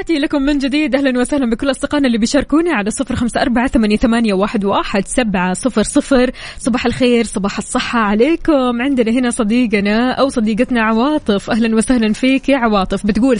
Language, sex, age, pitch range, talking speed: Arabic, female, 20-39, 210-260 Hz, 125 wpm